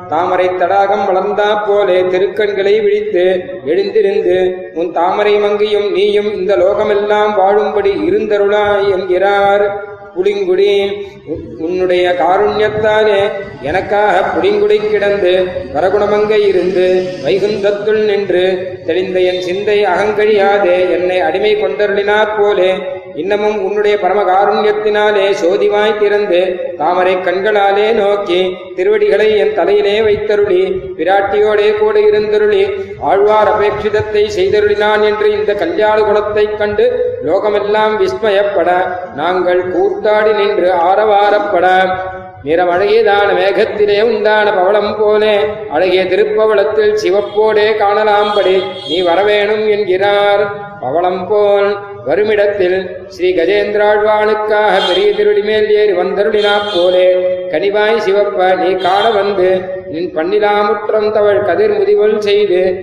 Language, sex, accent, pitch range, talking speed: Tamil, male, native, 185-215 Hz, 95 wpm